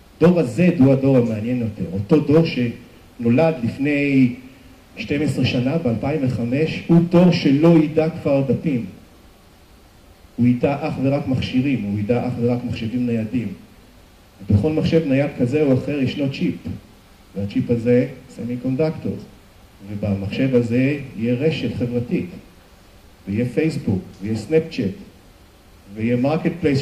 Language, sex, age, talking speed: Hebrew, male, 50-69, 120 wpm